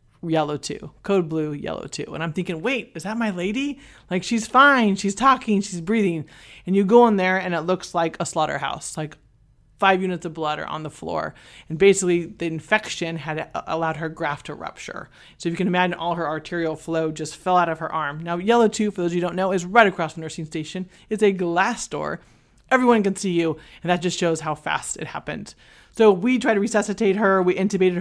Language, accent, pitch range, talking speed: English, American, 160-190 Hz, 225 wpm